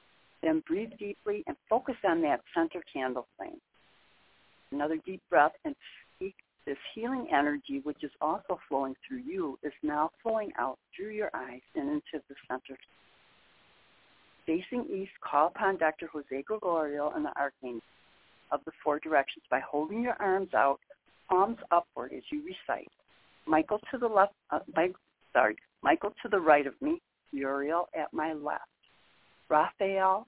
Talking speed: 155 wpm